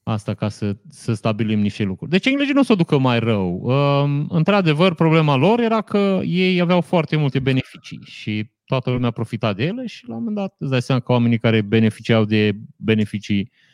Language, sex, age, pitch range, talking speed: Romanian, male, 30-49, 110-160 Hz, 205 wpm